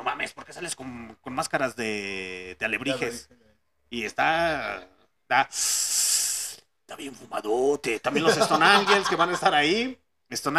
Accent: Mexican